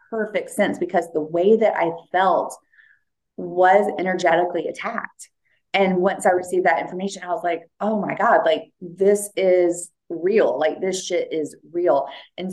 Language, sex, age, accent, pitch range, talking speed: English, female, 30-49, American, 160-195 Hz, 160 wpm